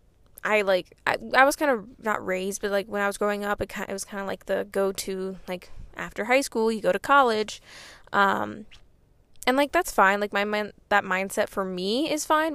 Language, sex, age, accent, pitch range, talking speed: English, female, 10-29, American, 200-255 Hz, 220 wpm